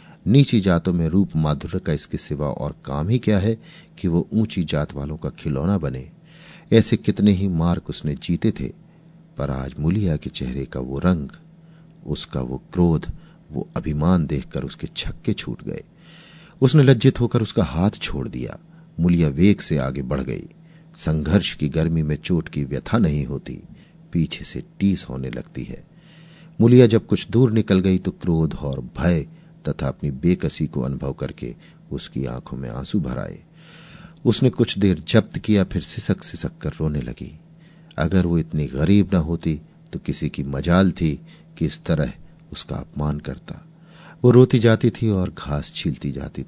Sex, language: male, Hindi